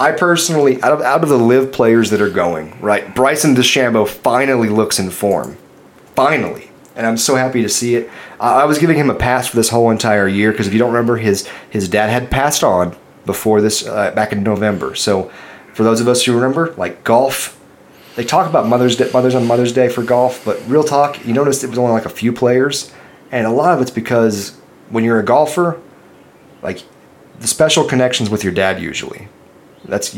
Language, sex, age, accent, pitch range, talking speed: English, male, 30-49, American, 100-125 Hz, 210 wpm